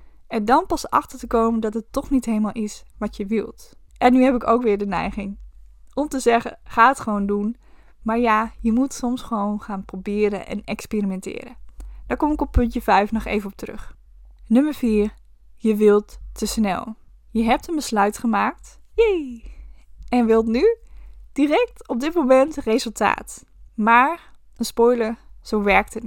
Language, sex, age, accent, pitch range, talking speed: Dutch, female, 10-29, Dutch, 210-255 Hz, 175 wpm